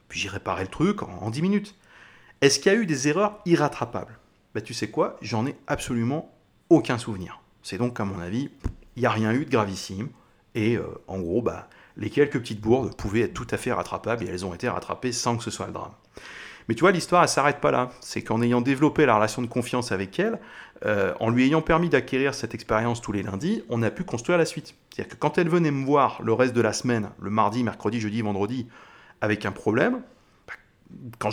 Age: 30-49